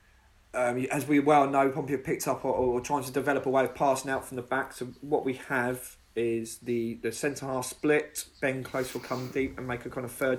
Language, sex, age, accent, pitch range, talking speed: English, male, 20-39, British, 125-150 Hz, 235 wpm